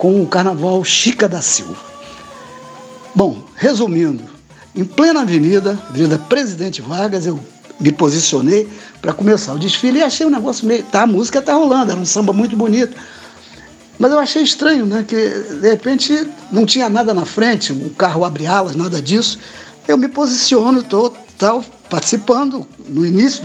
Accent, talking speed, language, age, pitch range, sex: Brazilian, 165 wpm, Portuguese, 60-79, 180-235 Hz, male